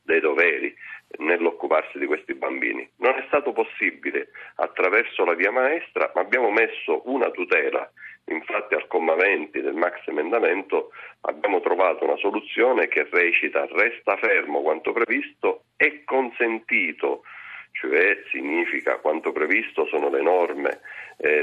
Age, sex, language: 40-59, male, Italian